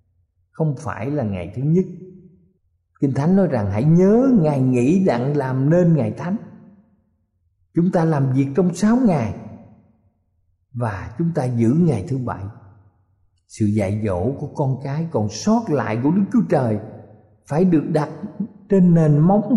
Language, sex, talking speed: Vietnamese, male, 160 wpm